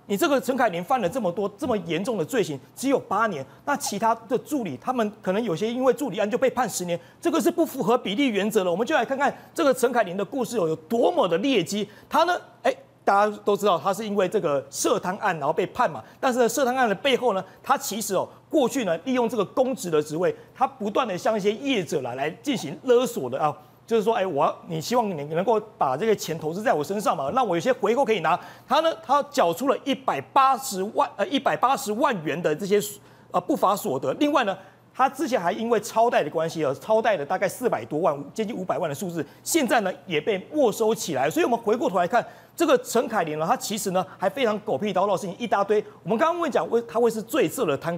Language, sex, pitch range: Chinese, male, 195-260 Hz